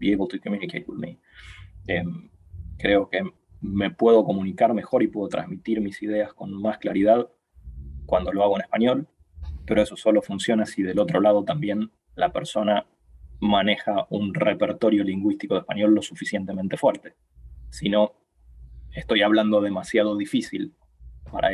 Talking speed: 150 wpm